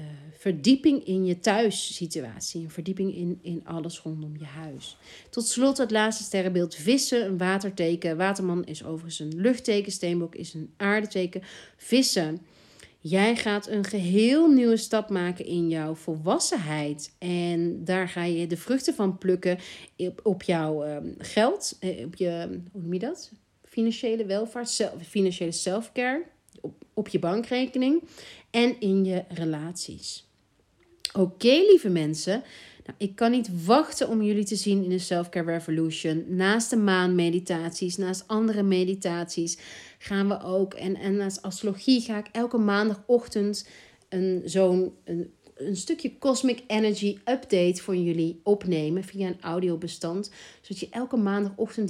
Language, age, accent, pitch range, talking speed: Dutch, 40-59, Dutch, 175-220 Hz, 140 wpm